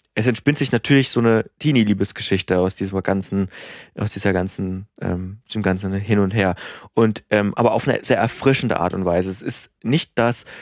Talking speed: 180 wpm